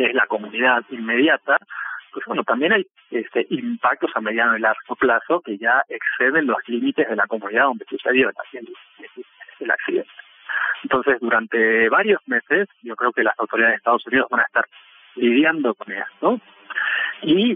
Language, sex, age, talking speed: Spanish, male, 40-59, 155 wpm